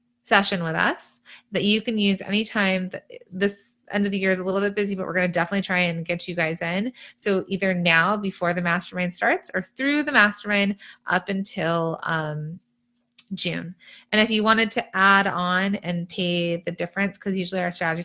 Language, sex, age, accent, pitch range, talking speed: English, female, 30-49, American, 180-220 Hz, 195 wpm